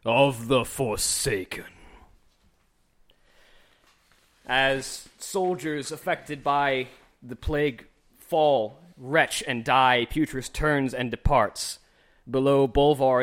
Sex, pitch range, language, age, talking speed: male, 115-140 Hz, English, 20-39, 85 wpm